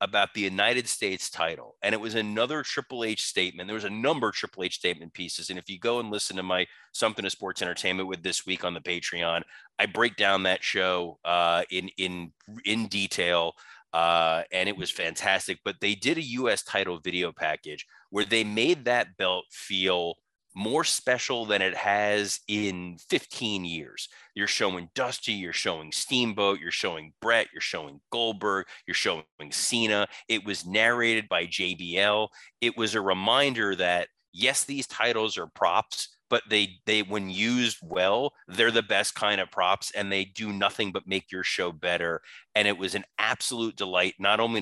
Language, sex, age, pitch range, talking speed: English, male, 30-49, 90-110 Hz, 180 wpm